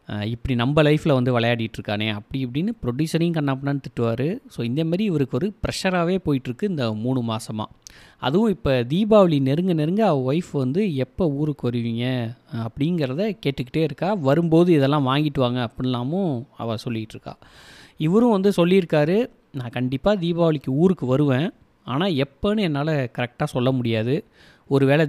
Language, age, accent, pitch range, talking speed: Tamil, 30-49, native, 125-170 Hz, 130 wpm